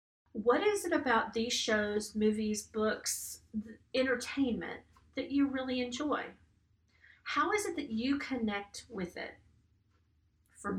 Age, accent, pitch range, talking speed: 40-59, American, 210-275 Hz, 120 wpm